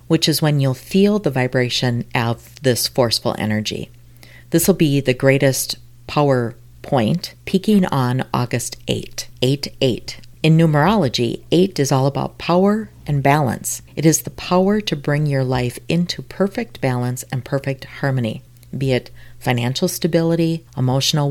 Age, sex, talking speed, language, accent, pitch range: 40-59, female, 145 wpm, English, American, 125-155 Hz